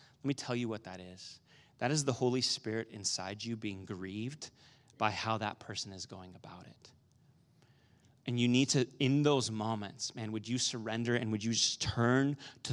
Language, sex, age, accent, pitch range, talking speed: English, male, 30-49, American, 115-155 Hz, 195 wpm